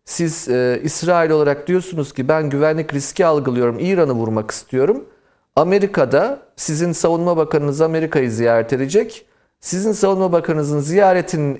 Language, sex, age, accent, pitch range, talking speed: Turkish, male, 40-59, native, 125-180 Hz, 125 wpm